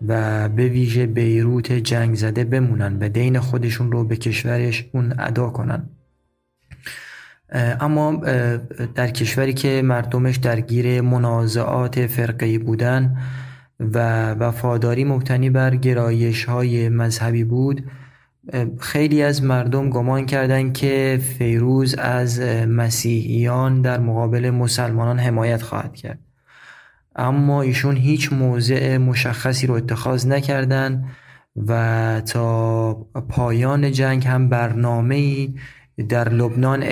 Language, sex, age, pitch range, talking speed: Persian, male, 20-39, 115-130 Hz, 105 wpm